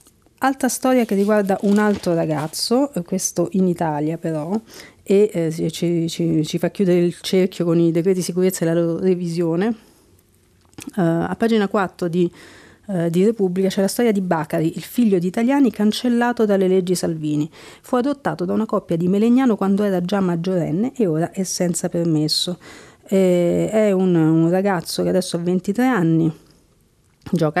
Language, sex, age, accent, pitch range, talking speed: Italian, female, 40-59, native, 170-200 Hz, 165 wpm